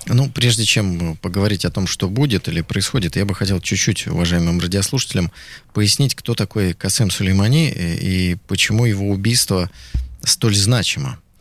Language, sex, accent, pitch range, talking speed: Russian, male, native, 95-125 Hz, 140 wpm